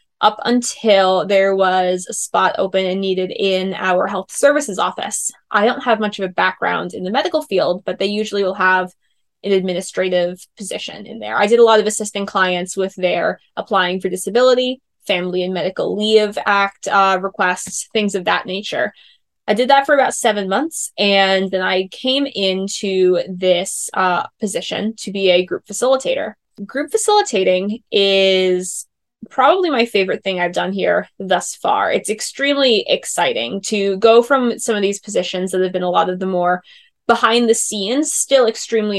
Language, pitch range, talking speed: English, 185-230 Hz, 175 wpm